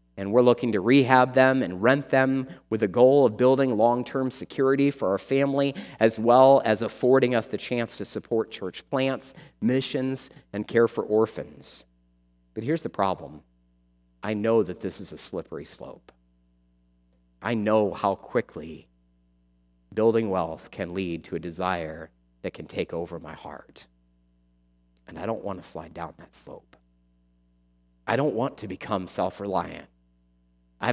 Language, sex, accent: English, male, American